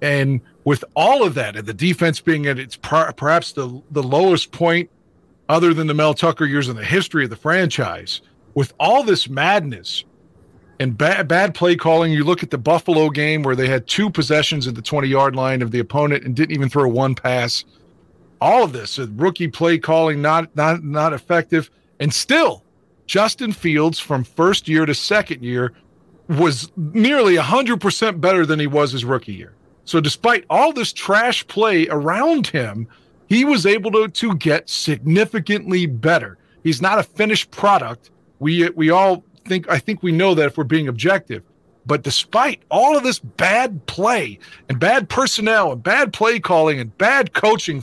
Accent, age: American, 40-59